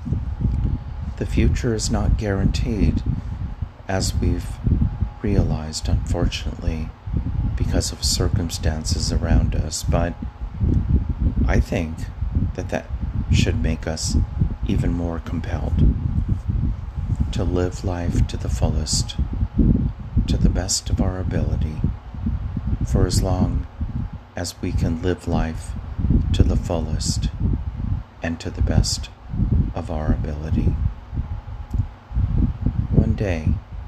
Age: 40-59